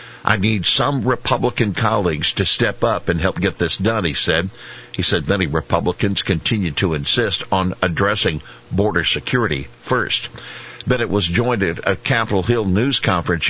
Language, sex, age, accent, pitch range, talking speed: English, male, 60-79, American, 85-110 Hz, 160 wpm